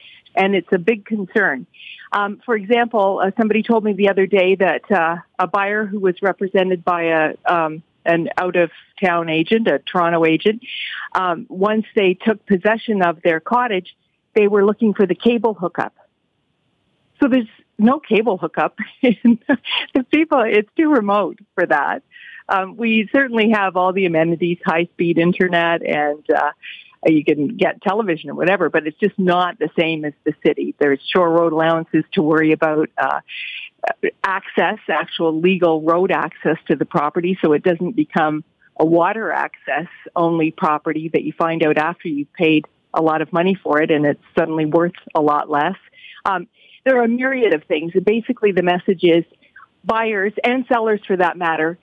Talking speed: 175 wpm